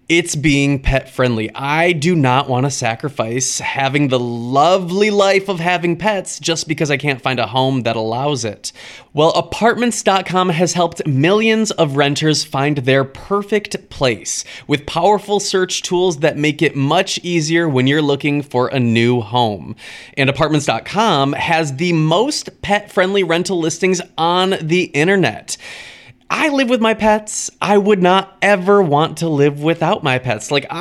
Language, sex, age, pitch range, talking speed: English, male, 20-39, 135-185 Hz, 160 wpm